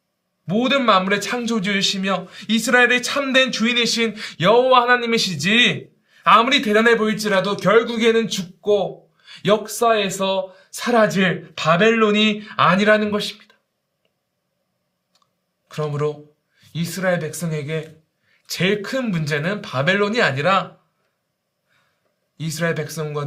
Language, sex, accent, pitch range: Korean, male, native, 150-215 Hz